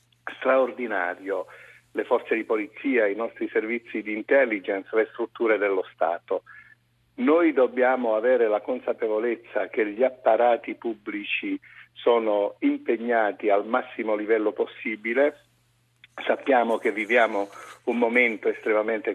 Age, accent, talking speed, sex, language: 50-69, native, 110 wpm, male, Italian